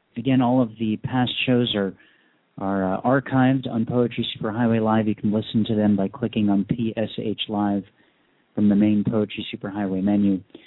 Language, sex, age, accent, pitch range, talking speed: English, male, 40-59, American, 105-130 Hz, 170 wpm